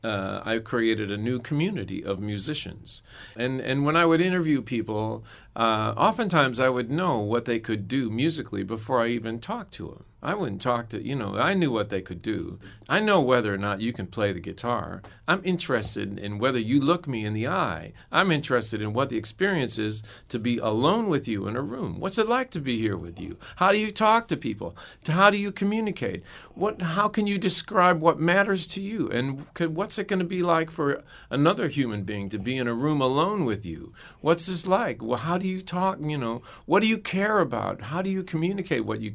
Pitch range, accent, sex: 115-180 Hz, American, male